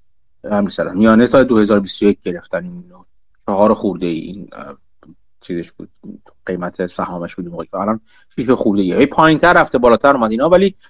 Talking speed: 130 wpm